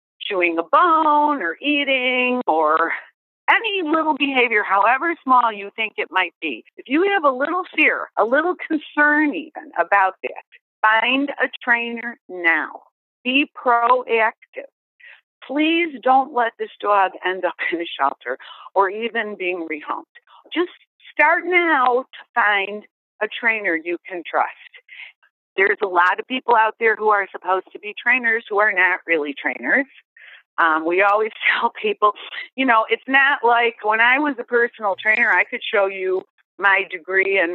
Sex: female